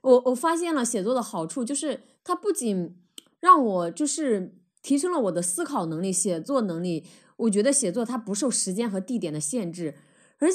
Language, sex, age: Chinese, female, 20-39